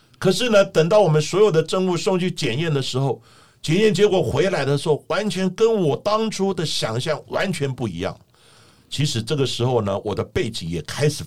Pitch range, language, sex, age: 115-165 Hz, Chinese, male, 50-69